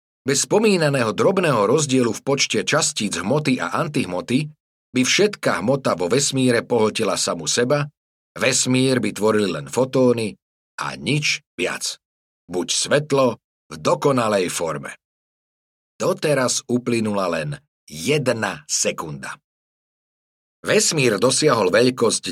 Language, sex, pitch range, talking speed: Slovak, male, 105-145 Hz, 105 wpm